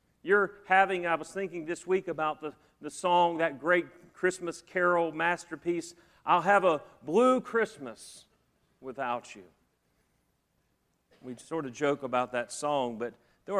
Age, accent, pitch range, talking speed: 40-59, American, 160-220 Hz, 140 wpm